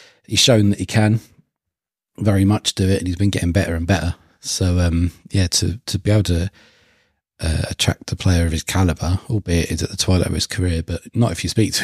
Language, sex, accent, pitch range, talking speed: English, male, British, 85-100 Hz, 230 wpm